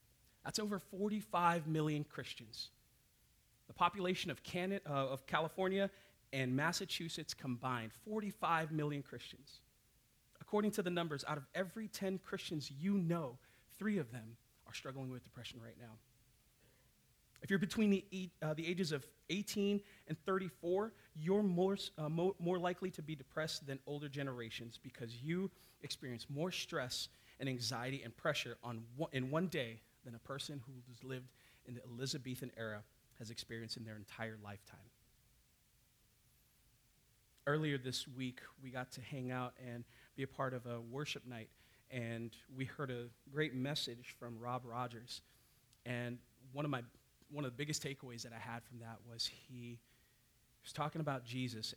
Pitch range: 120-165 Hz